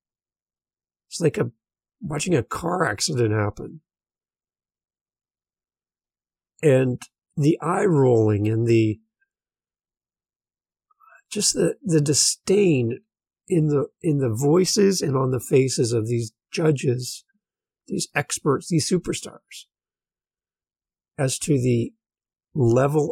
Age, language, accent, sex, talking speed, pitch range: 50-69, English, American, male, 95 wpm, 115-165 Hz